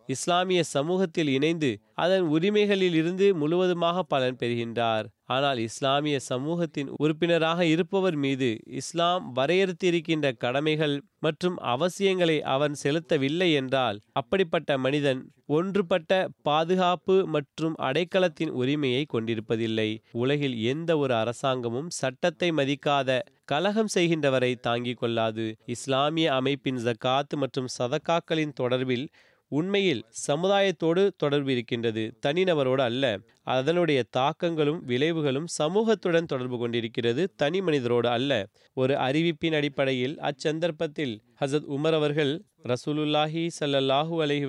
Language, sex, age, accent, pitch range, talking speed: Tamil, male, 30-49, native, 130-170 Hz, 95 wpm